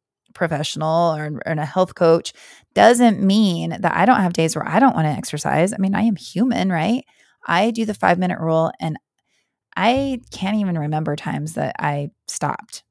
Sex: female